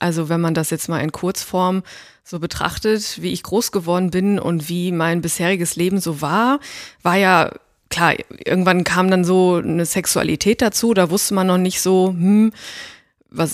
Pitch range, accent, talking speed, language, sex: 180-230 Hz, German, 175 wpm, German, female